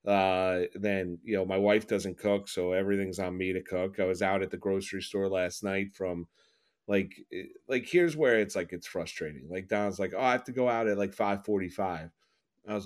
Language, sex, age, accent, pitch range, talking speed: English, male, 30-49, American, 95-115 Hz, 215 wpm